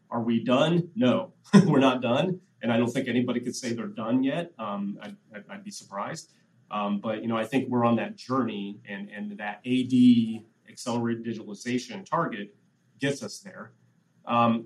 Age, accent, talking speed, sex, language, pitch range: 30-49, American, 180 wpm, male, English, 110-125 Hz